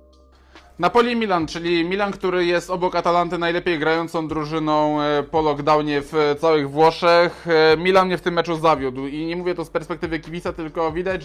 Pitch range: 155-180 Hz